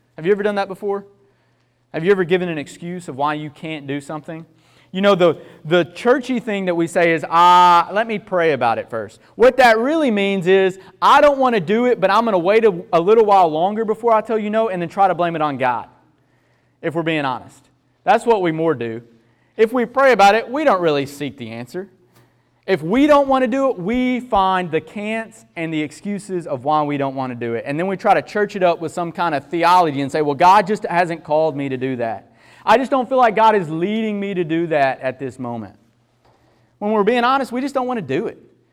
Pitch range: 140-210 Hz